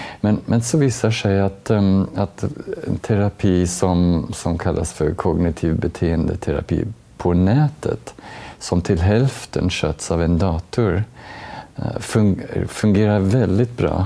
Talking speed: 115 wpm